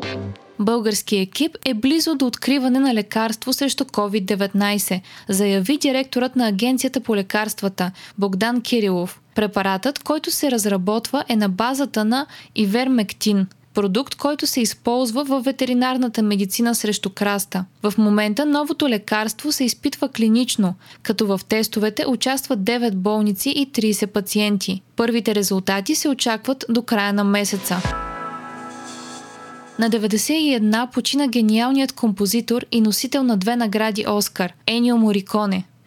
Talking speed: 125 wpm